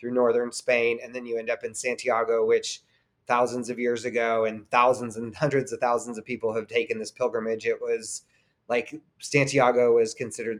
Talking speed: 185 wpm